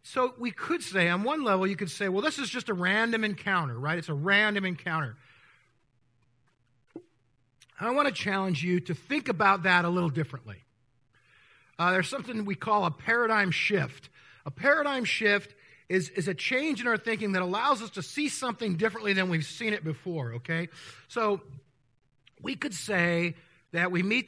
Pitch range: 150-215 Hz